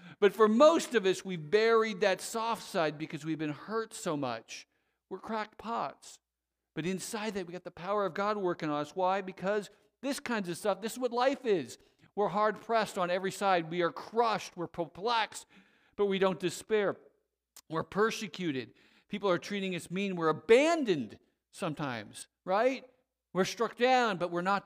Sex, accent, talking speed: male, American, 180 wpm